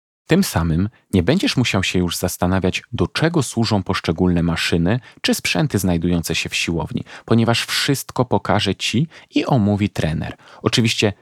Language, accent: Polish, native